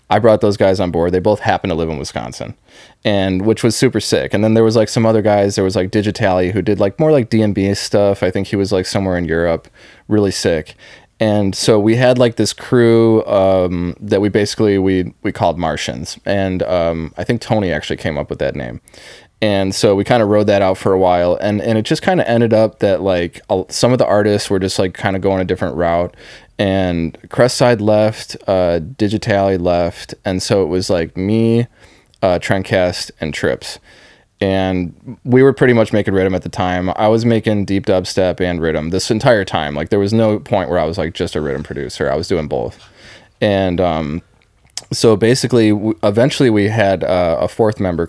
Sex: male